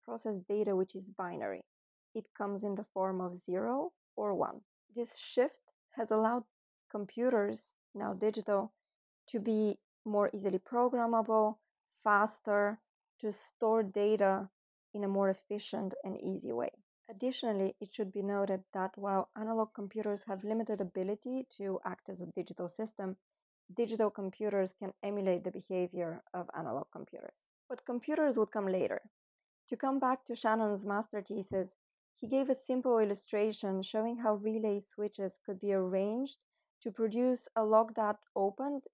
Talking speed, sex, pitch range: 145 wpm, female, 195-225 Hz